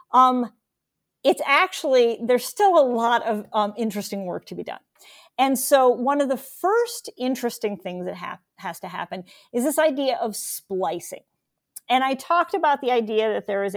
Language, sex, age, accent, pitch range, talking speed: English, female, 40-59, American, 205-275 Hz, 175 wpm